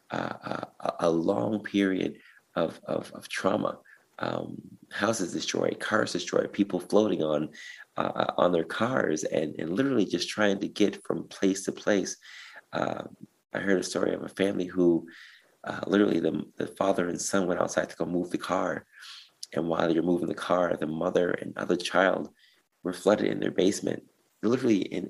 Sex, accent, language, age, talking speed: male, American, English, 30-49, 175 wpm